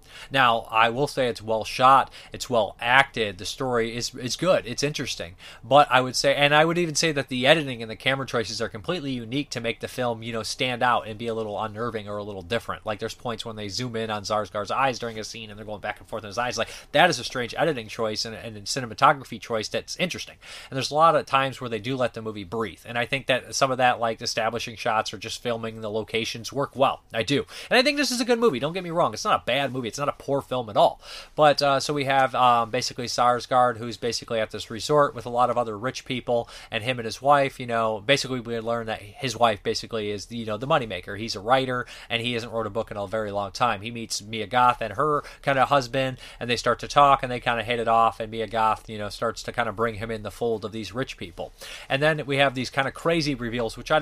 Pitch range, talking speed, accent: 110-135 Hz, 275 wpm, American